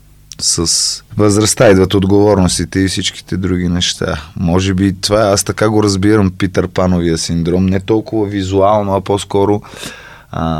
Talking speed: 135 wpm